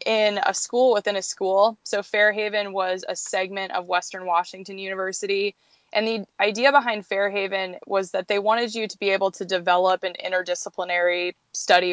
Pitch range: 180-205 Hz